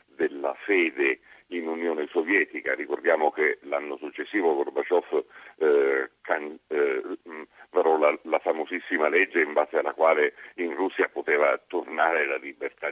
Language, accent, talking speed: Italian, native, 135 wpm